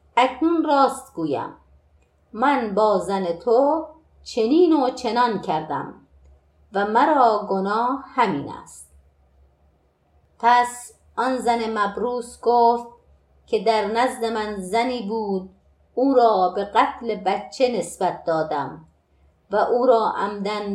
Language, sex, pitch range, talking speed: Persian, female, 185-250 Hz, 110 wpm